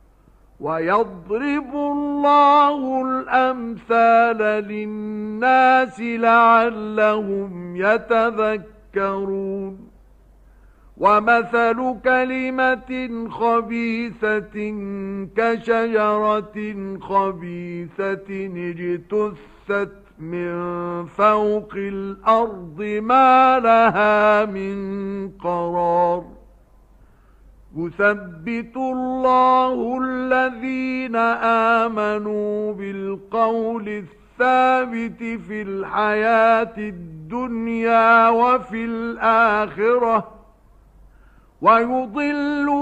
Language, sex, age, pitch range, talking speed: Arabic, male, 50-69, 195-245 Hz, 45 wpm